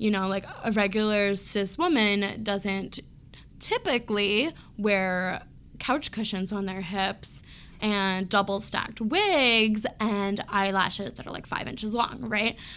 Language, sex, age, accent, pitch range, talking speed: English, female, 20-39, American, 200-235 Hz, 125 wpm